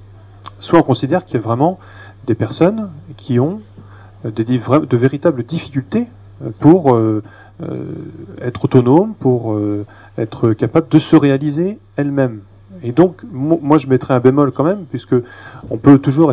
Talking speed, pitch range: 135 wpm, 110-145 Hz